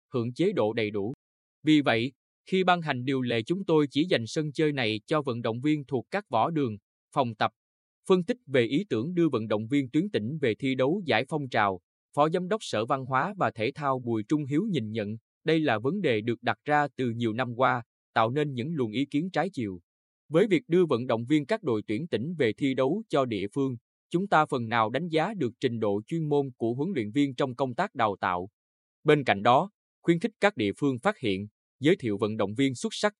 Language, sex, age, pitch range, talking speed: Vietnamese, male, 20-39, 115-155 Hz, 240 wpm